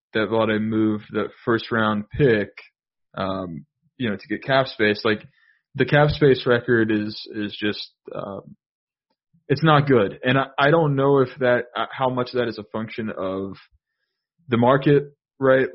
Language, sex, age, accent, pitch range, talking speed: English, male, 20-39, American, 115-140 Hz, 170 wpm